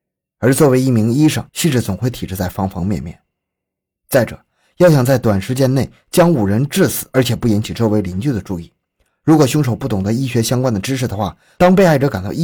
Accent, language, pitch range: native, Chinese, 100-135 Hz